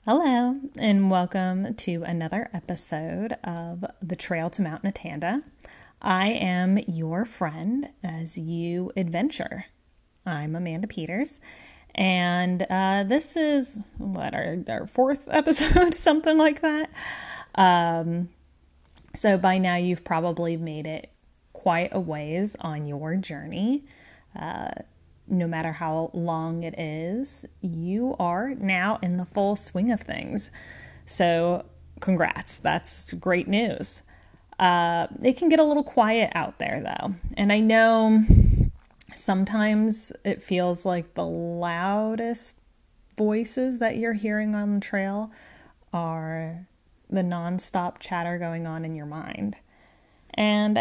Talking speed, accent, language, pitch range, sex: 125 wpm, American, English, 170-220 Hz, female